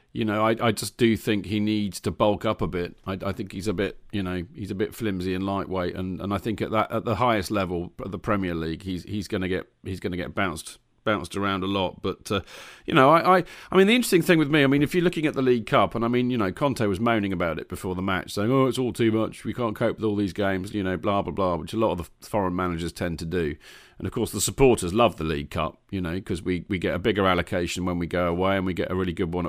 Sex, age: male, 40-59